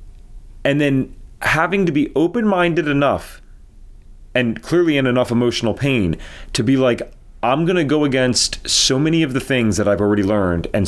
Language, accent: English, American